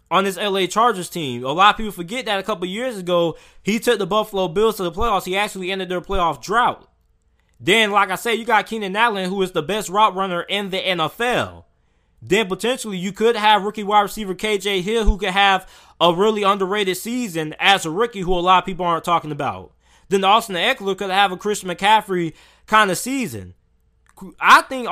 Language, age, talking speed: English, 20-39, 210 wpm